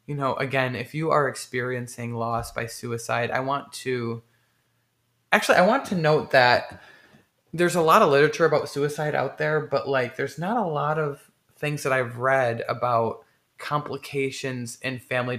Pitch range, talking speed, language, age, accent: 120-145 Hz, 170 wpm, English, 20-39, American